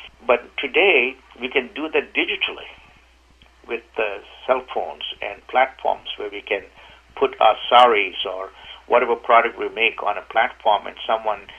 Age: 60-79